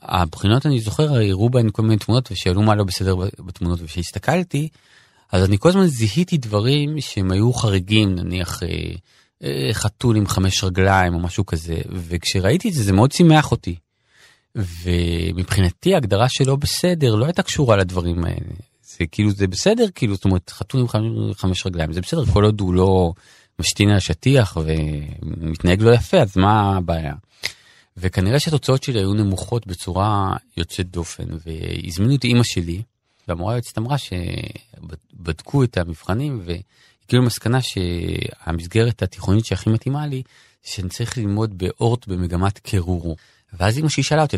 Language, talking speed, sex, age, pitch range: Hebrew, 145 wpm, male, 30-49, 90-120 Hz